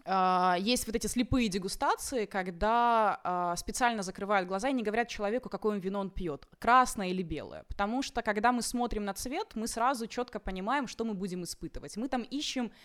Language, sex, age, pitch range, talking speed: Ukrainian, female, 20-39, 185-245 Hz, 175 wpm